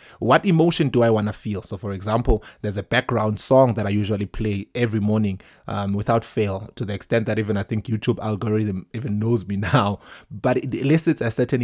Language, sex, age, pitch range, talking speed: English, male, 20-39, 105-125 Hz, 210 wpm